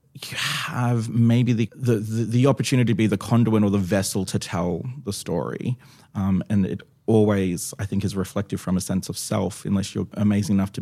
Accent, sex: Australian, male